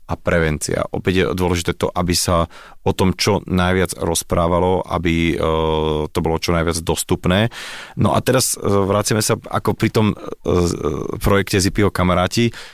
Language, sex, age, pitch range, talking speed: Slovak, male, 30-49, 85-95 Hz, 140 wpm